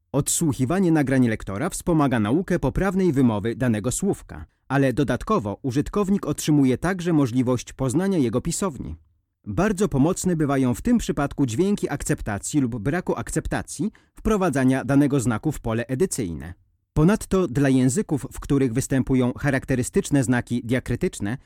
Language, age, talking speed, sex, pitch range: Polish, 40-59, 125 wpm, male, 120-165 Hz